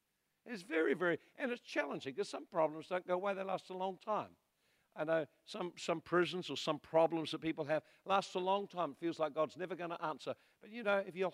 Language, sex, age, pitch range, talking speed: English, male, 60-79, 150-220 Hz, 240 wpm